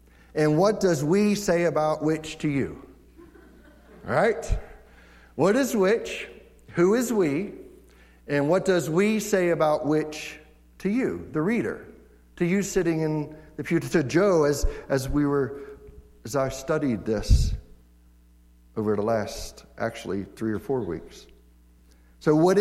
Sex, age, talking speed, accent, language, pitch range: male, 60-79, 140 wpm, American, English, 135-165 Hz